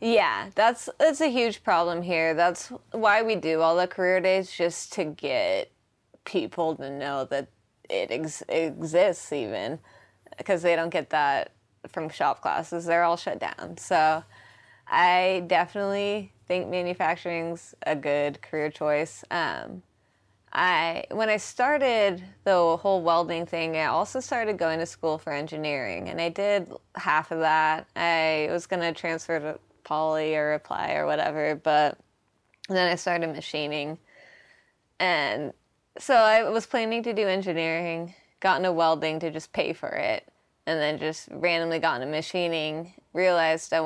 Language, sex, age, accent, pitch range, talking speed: English, female, 20-39, American, 155-190 Hz, 150 wpm